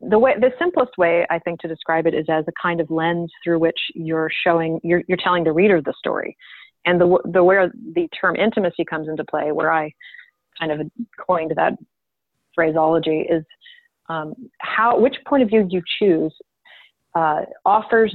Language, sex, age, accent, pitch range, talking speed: English, female, 30-49, American, 165-205 Hz, 180 wpm